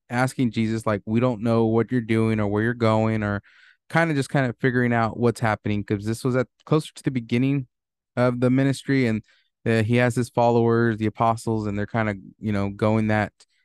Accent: American